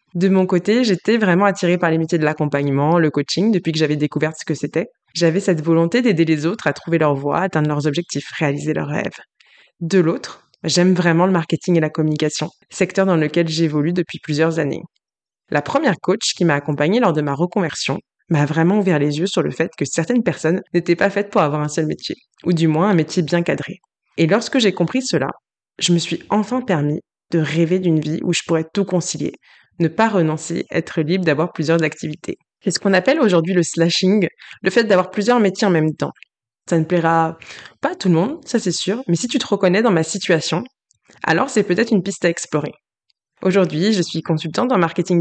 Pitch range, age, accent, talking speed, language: 160-190 Hz, 20-39, French, 215 wpm, French